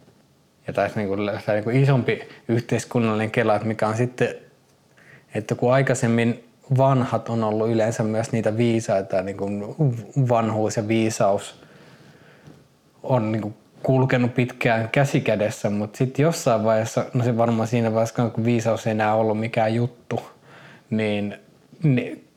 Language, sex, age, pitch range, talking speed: Finnish, male, 20-39, 110-130 Hz, 125 wpm